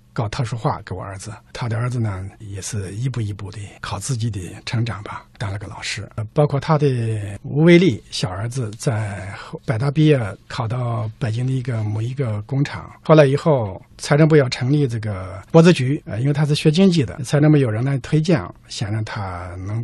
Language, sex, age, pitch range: Chinese, male, 50-69, 110-155 Hz